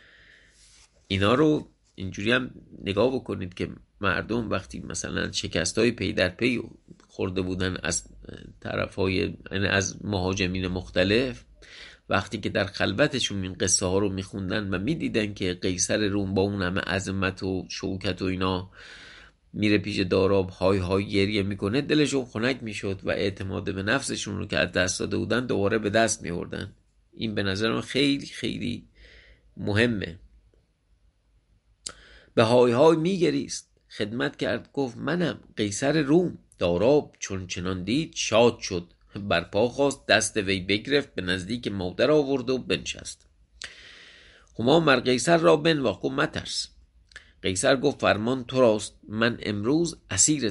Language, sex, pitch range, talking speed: English, male, 95-125 Hz, 140 wpm